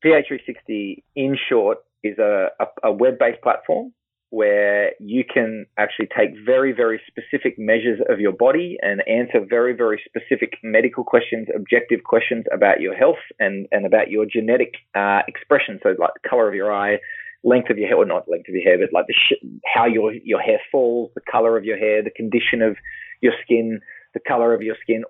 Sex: male